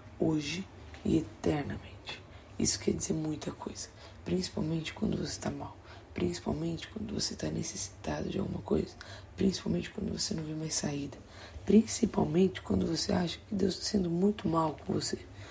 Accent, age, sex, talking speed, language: Brazilian, 20-39, female, 155 wpm, Portuguese